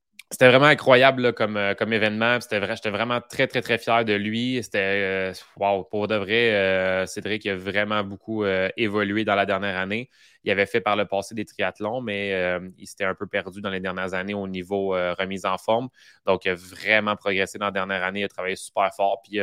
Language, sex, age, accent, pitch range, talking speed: French, male, 20-39, Canadian, 95-115 Hz, 230 wpm